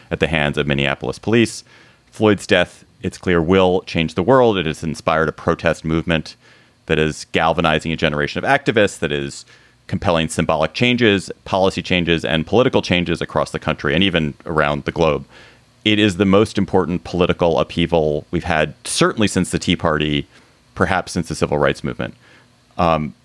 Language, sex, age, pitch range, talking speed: English, male, 30-49, 80-105 Hz, 170 wpm